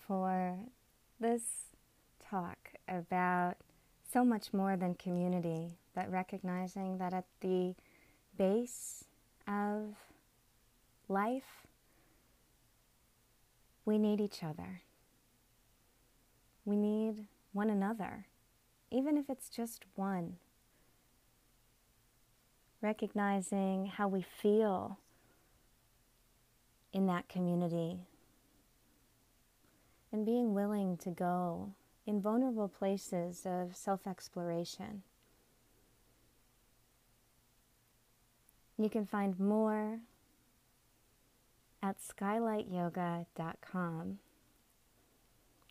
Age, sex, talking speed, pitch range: 30-49, female, 70 wpm, 175-210 Hz